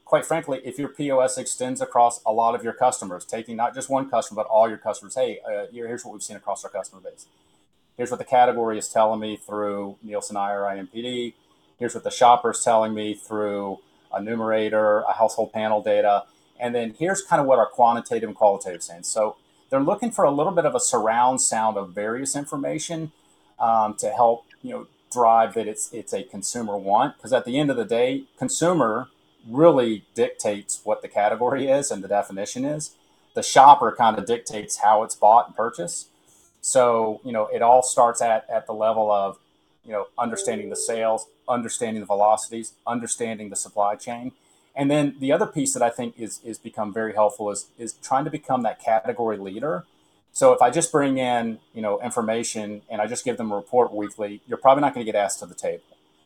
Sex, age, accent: male, 30-49, American